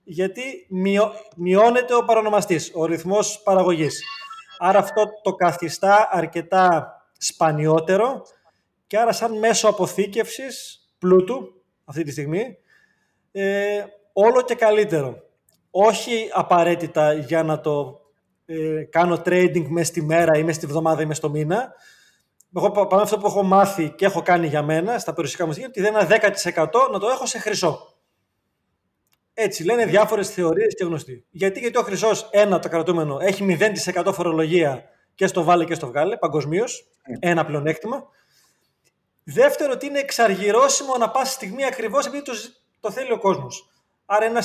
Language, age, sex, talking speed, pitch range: Greek, 20-39, male, 145 wpm, 170-225 Hz